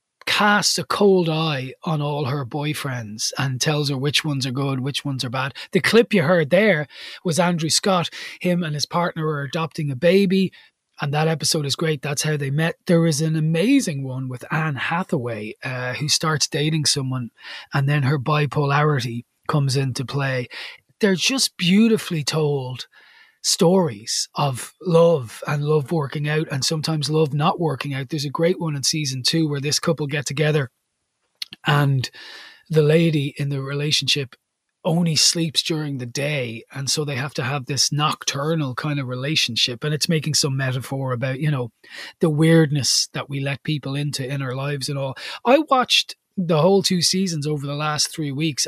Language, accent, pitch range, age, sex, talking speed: English, Irish, 140-165 Hz, 20-39, male, 180 wpm